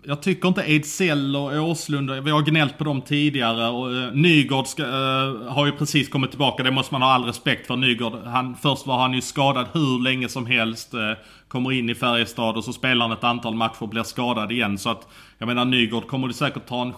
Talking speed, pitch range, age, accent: 235 wpm, 115-140 Hz, 30-49, Norwegian